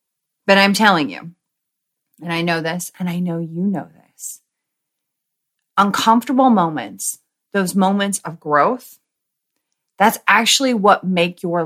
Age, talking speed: 30-49, 130 wpm